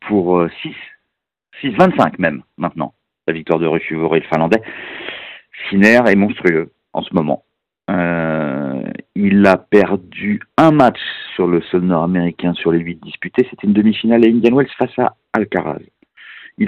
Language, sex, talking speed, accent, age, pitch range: French, male, 150 wpm, French, 50-69, 85-110 Hz